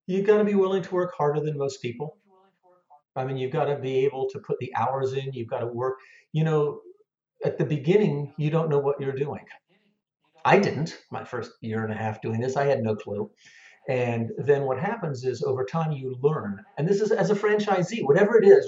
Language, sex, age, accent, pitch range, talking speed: English, male, 50-69, American, 130-180 Hz, 225 wpm